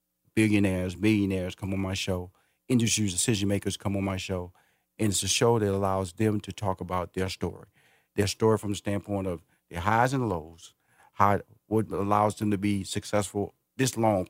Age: 50-69